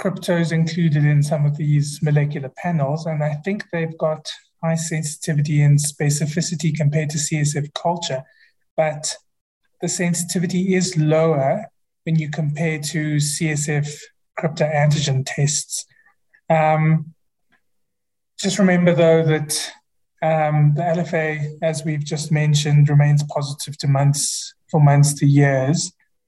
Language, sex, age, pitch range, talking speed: English, male, 20-39, 145-165 Hz, 120 wpm